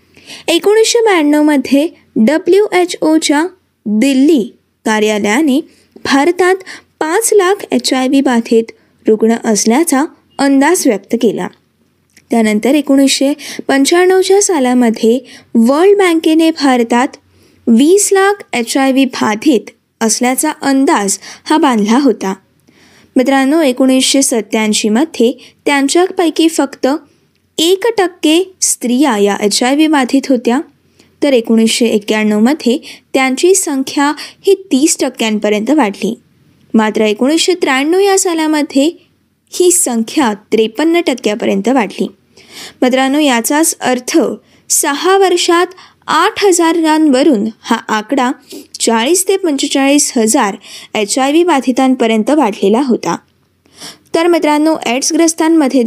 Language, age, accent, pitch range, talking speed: Marathi, 20-39, native, 235-325 Hz, 95 wpm